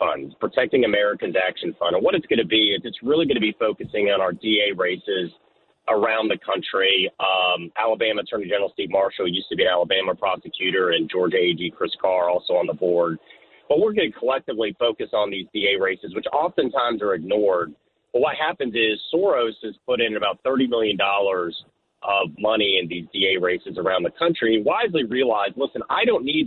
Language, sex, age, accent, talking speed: English, male, 40-59, American, 195 wpm